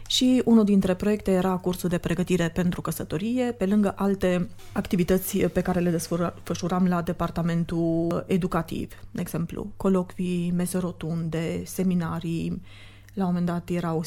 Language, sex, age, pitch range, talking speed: Romanian, female, 30-49, 170-195 Hz, 130 wpm